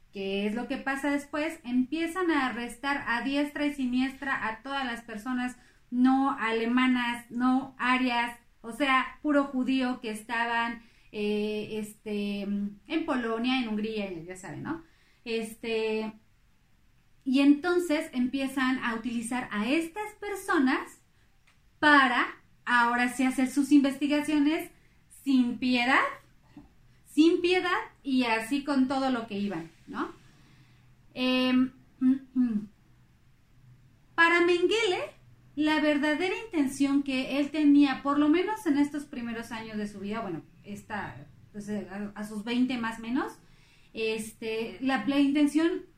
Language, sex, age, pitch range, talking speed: Spanish, female, 30-49, 220-285 Hz, 125 wpm